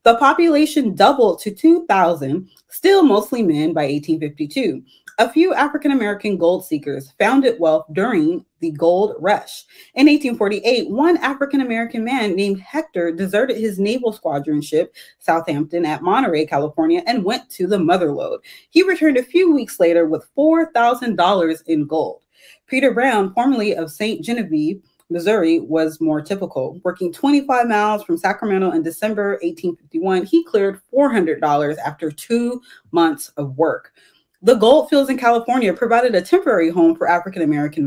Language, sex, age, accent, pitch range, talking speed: English, female, 30-49, American, 170-280 Hz, 145 wpm